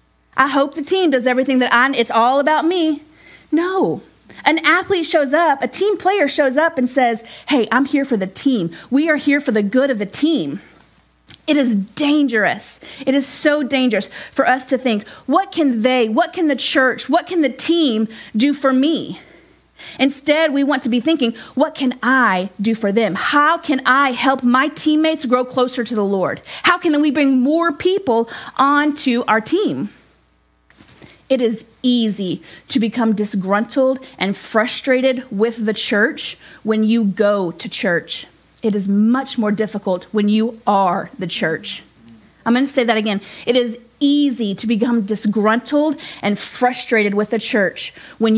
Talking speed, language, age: 175 wpm, English, 40-59